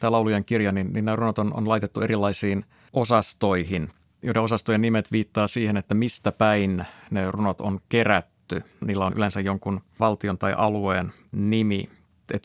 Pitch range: 95-115 Hz